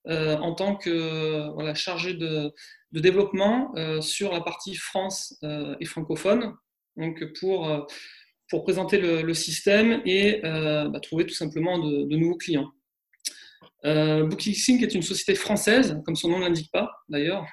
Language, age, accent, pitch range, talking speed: French, 20-39, French, 155-200 Hz, 165 wpm